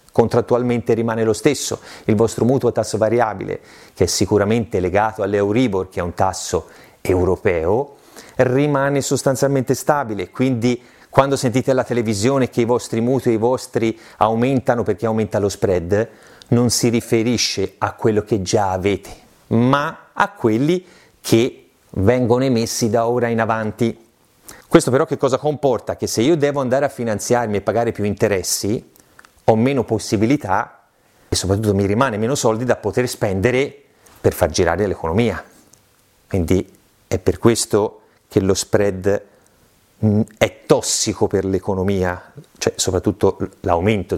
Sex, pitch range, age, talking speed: male, 105-125 Hz, 30-49, 140 wpm